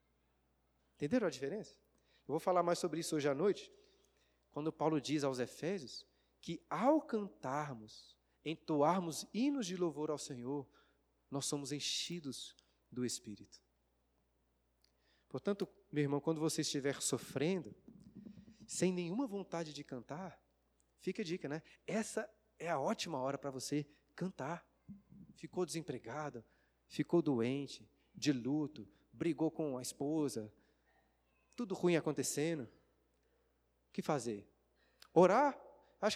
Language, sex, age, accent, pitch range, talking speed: Portuguese, male, 40-59, Brazilian, 130-190 Hz, 120 wpm